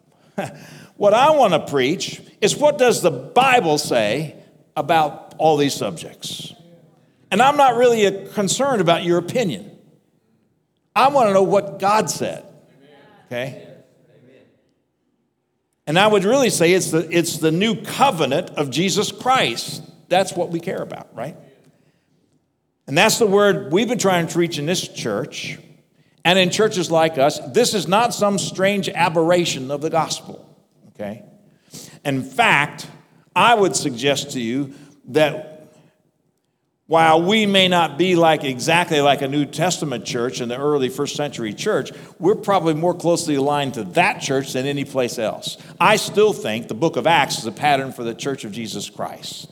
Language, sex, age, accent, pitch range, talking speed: English, male, 60-79, American, 145-195 Hz, 160 wpm